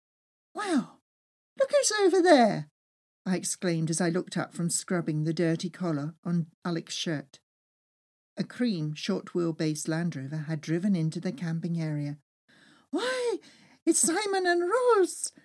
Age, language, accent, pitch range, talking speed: 50-69, English, British, 165-225 Hz, 135 wpm